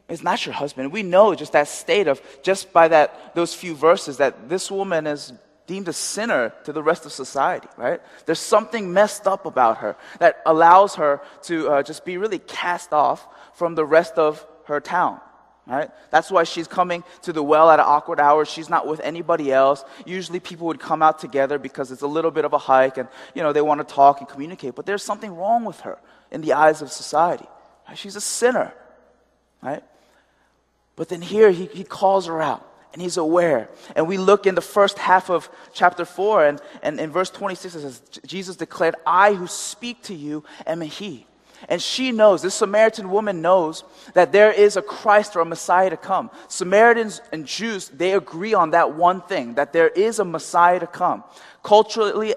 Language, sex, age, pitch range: Korean, male, 20-39, 155-195 Hz